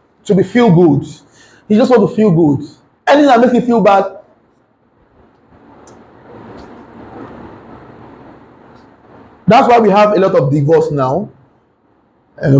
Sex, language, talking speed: male, English, 125 wpm